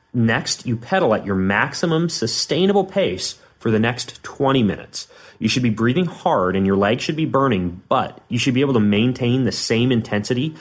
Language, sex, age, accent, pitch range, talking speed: English, male, 30-49, American, 105-140 Hz, 190 wpm